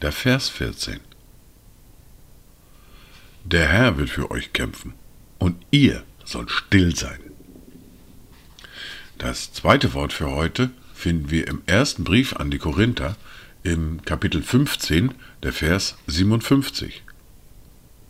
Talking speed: 105 wpm